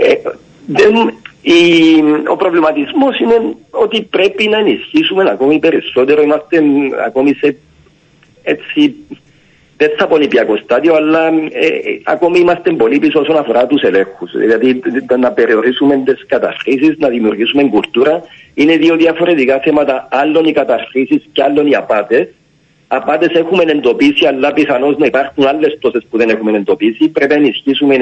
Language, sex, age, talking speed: Greek, male, 50-69, 135 wpm